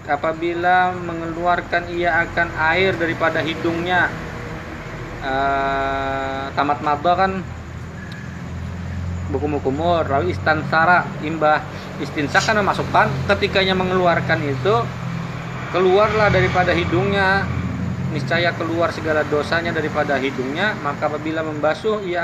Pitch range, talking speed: 140-175 Hz, 90 wpm